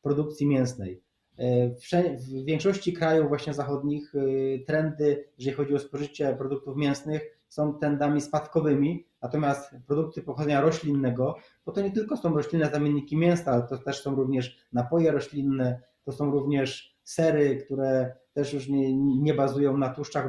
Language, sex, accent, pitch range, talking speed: Polish, male, native, 135-155 Hz, 140 wpm